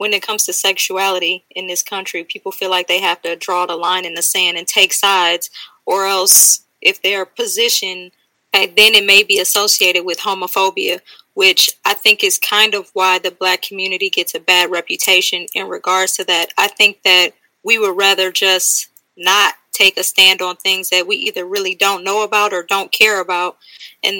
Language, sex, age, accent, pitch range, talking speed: English, female, 20-39, American, 180-210 Hz, 195 wpm